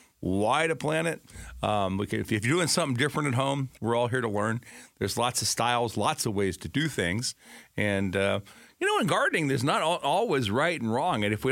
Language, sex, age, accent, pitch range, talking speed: English, male, 50-69, American, 115-155 Hz, 230 wpm